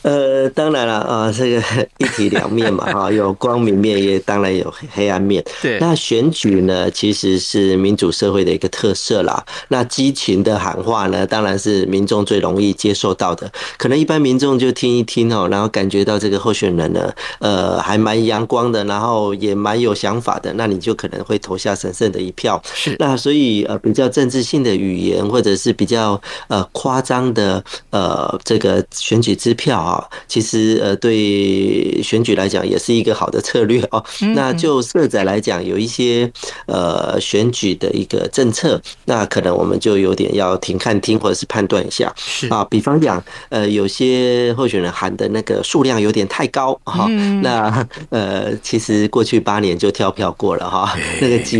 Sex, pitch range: male, 100-120 Hz